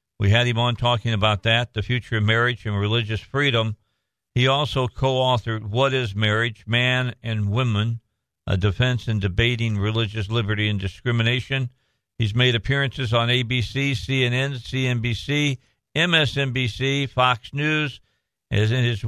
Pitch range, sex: 105-125 Hz, male